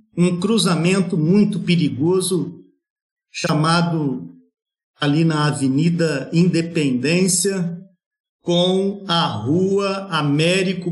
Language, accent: Portuguese, Brazilian